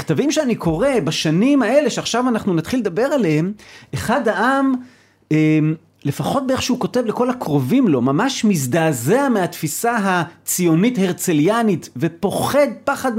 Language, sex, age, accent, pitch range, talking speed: Hebrew, male, 40-59, native, 160-240 Hz, 120 wpm